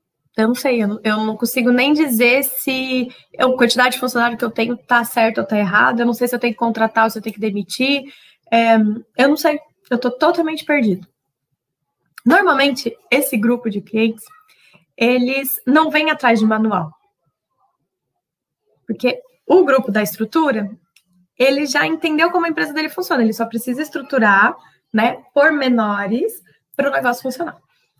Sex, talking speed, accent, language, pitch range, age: female, 165 wpm, Brazilian, Portuguese, 225-295 Hz, 20-39